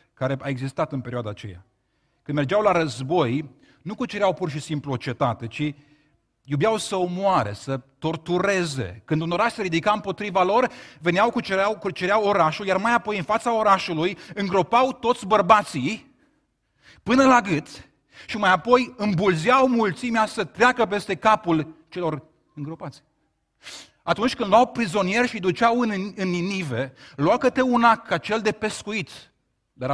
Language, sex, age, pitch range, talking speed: Romanian, male, 30-49, 160-225 Hz, 145 wpm